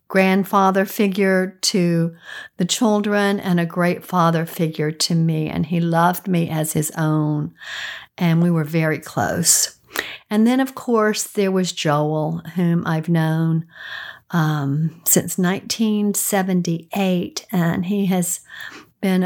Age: 50-69